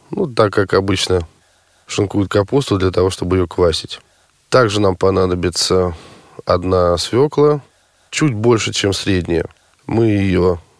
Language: Russian